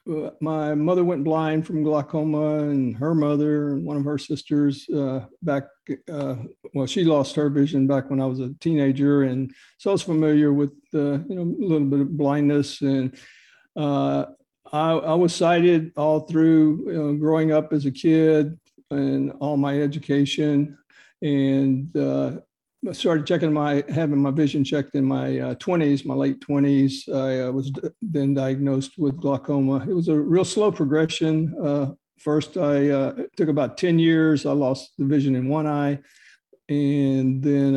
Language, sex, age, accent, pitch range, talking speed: English, male, 60-79, American, 135-155 Hz, 170 wpm